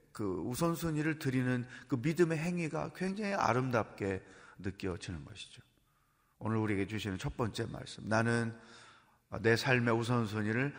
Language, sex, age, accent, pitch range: Korean, male, 40-59, native, 115-155 Hz